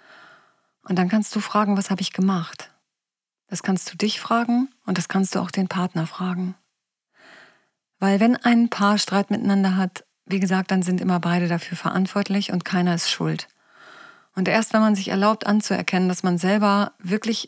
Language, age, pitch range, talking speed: German, 30-49, 180-210 Hz, 180 wpm